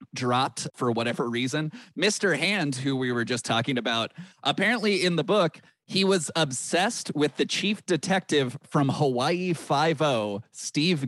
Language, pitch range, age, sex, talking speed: English, 130-175 Hz, 30-49, male, 145 wpm